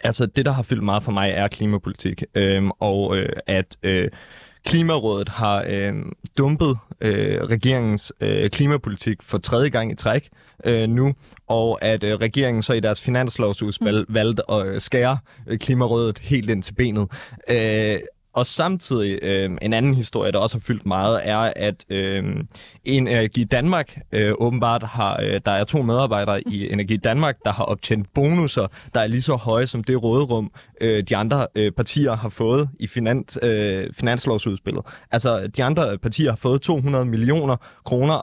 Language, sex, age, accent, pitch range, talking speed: Danish, male, 20-39, native, 105-130 Hz, 170 wpm